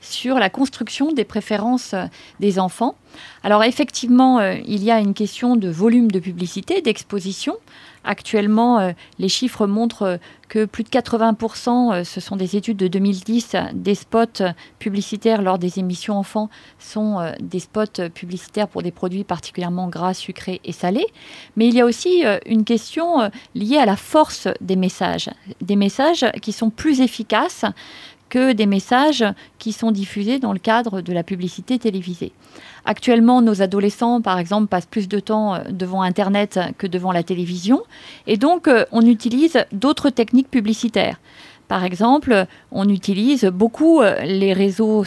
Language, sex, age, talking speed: French, female, 40-59, 160 wpm